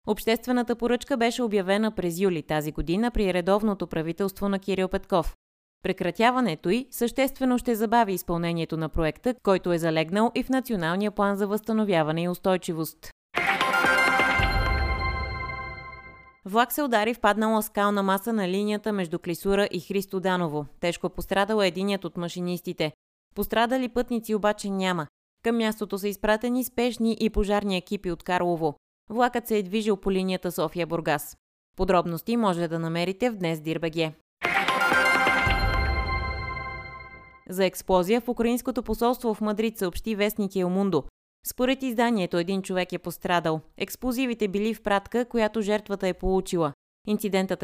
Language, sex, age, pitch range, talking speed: Bulgarian, female, 20-39, 170-215 Hz, 130 wpm